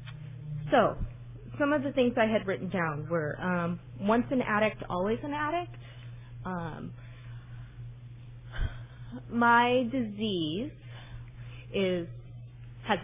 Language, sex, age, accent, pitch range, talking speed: English, female, 30-49, American, 120-185 Hz, 100 wpm